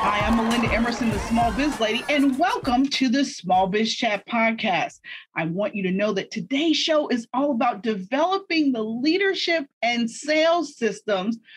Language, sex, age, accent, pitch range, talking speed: English, female, 40-59, American, 225-310 Hz, 170 wpm